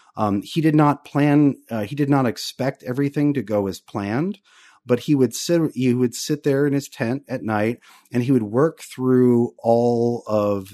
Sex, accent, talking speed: male, American, 195 wpm